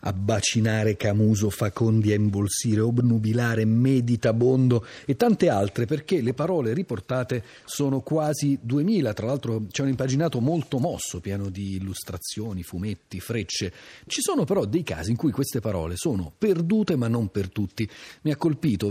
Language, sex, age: Italian, male, 40-59